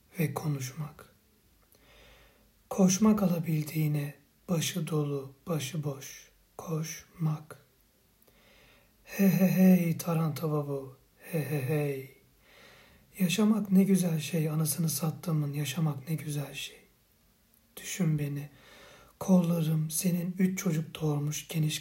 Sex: male